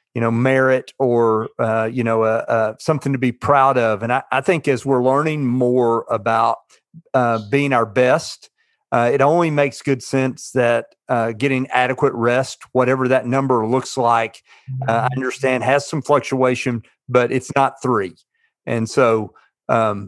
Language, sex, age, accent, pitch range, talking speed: English, male, 40-59, American, 115-135 Hz, 165 wpm